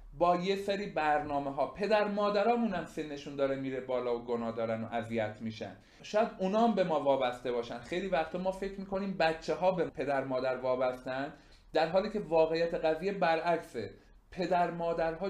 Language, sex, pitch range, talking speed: Persian, male, 140-190 Hz, 170 wpm